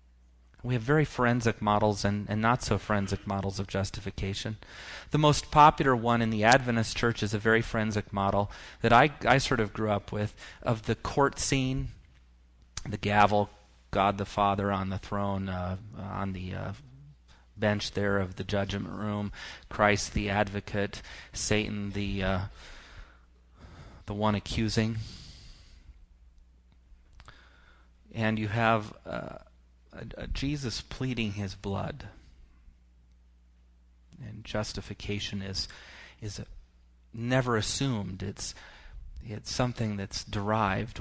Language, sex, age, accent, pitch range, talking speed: English, male, 30-49, American, 95-115 Hz, 120 wpm